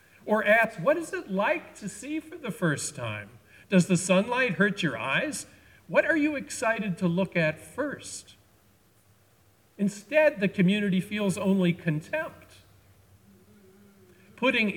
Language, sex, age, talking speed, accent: English, male, 50-69, 135 wpm, American